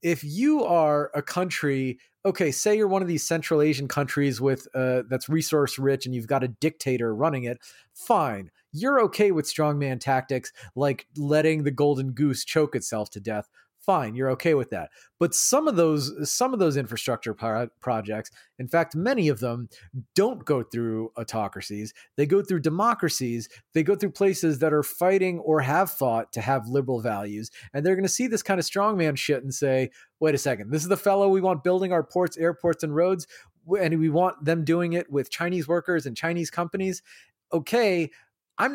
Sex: male